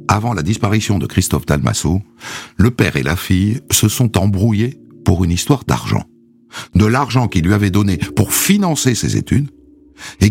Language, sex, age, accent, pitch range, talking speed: French, male, 60-79, French, 95-130 Hz, 170 wpm